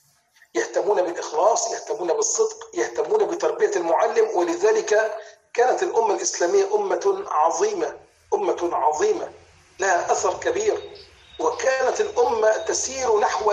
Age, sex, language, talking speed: 40-59, male, Indonesian, 100 wpm